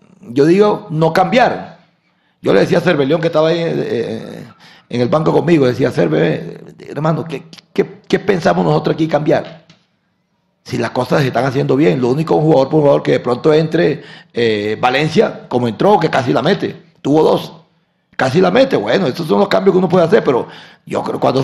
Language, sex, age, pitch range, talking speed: Spanish, male, 40-59, 125-165 Hz, 205 wpm